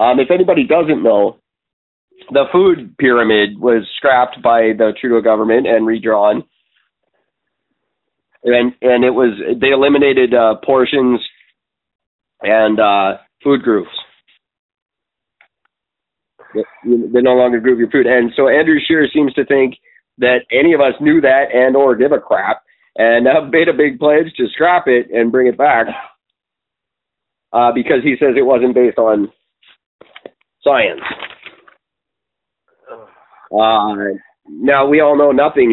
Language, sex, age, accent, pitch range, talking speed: English, male, 30-49, American, 115-180 Hz, 135 wpm